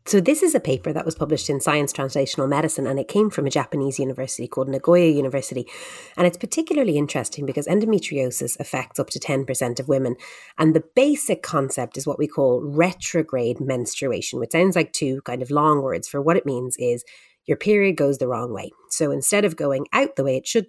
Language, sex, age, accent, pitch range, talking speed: English, female, 30-49, Irish, 135-180 Hz, 210 wpm